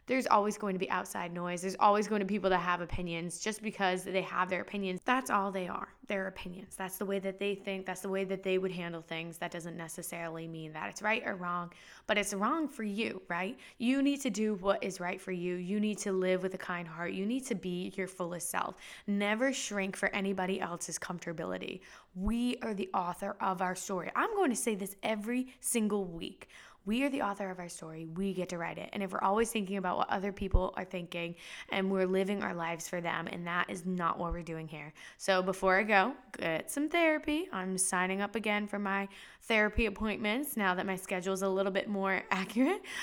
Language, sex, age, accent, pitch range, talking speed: English, female, 20-39, American, 180-215 Hz, 230 wpm